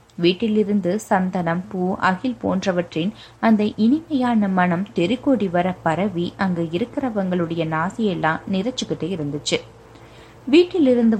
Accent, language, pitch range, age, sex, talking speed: native, Tamil, 170-230 Hz, 20-39, female, 90 wpm